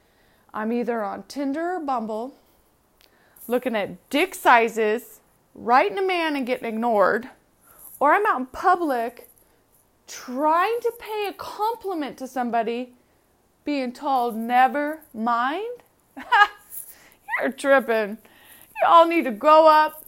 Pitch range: 235-310 Hz